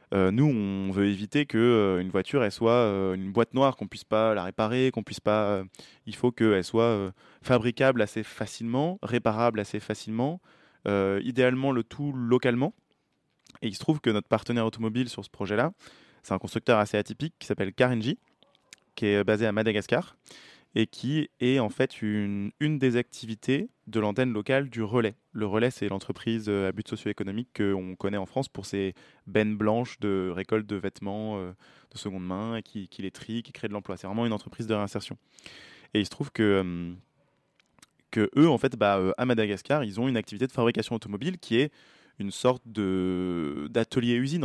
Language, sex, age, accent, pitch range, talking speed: French, male, 20-39, French, 100-125 Hz, 190 wpm